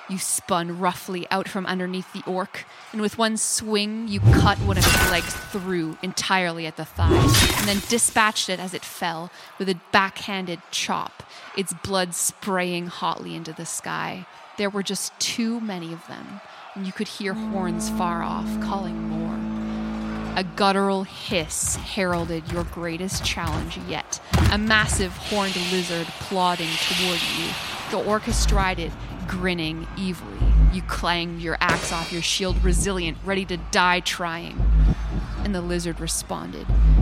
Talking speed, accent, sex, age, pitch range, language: 150 wpm, American, female, 20-39, 165-195 Hz, English